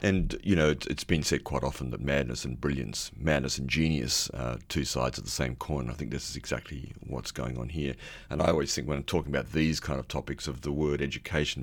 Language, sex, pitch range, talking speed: English, male, 65-80 Hz, 245 wpm